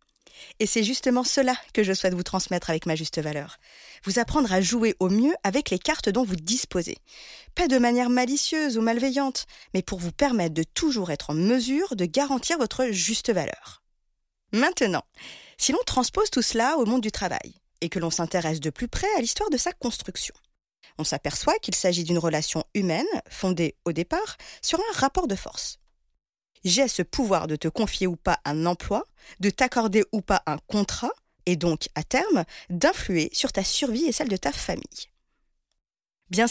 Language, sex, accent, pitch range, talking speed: French, female, French, 175-255 Hz, 185 wpm